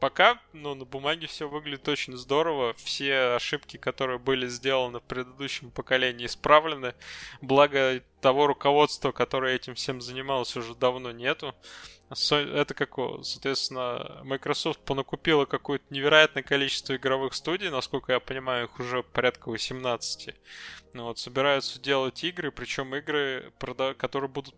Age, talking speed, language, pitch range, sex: 20-39, 120 wpm, Russian, 130-145 Hz, male